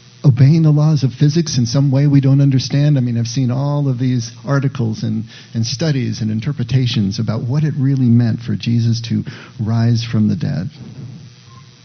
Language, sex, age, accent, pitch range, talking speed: English, male, 50-69, American, 120-140 Hz, 180 wpm